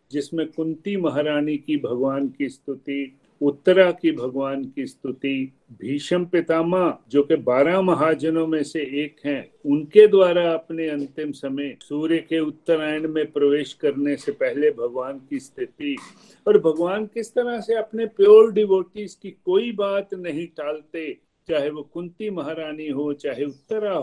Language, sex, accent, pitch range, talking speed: Hindi, male, native, 145-195 Hz, 145 wpm